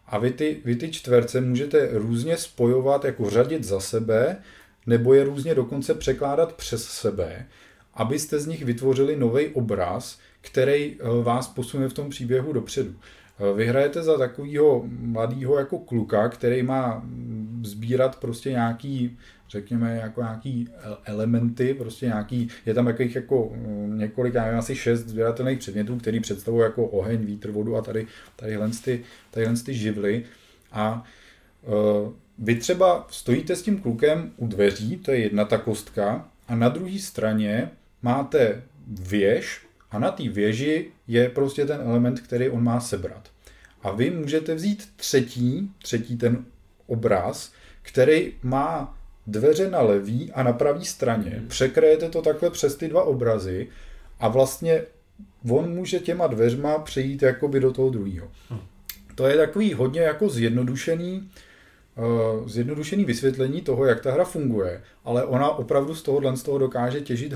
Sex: male